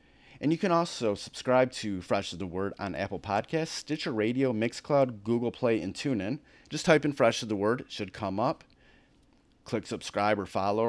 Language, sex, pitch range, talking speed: English, male, 100-135 Hz, 195 wpm